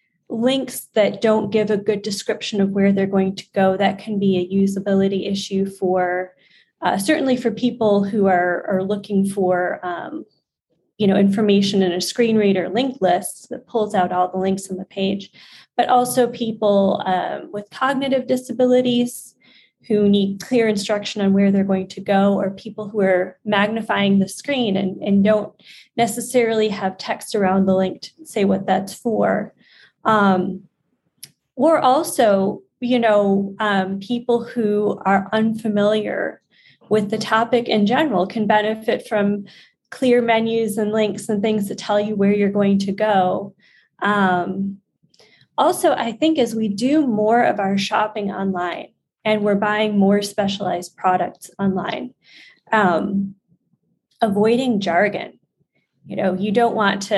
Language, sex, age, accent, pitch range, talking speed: English, female, 20-39, American, 195-225 Hz, 155 wpm